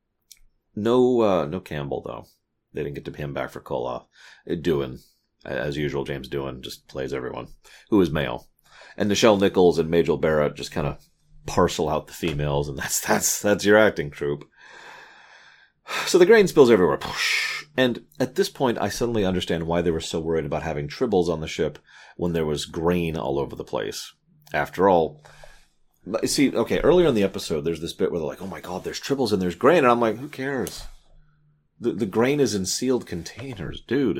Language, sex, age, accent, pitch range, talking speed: English, male, 30-49, American, 80-115 Hz, 195 wpm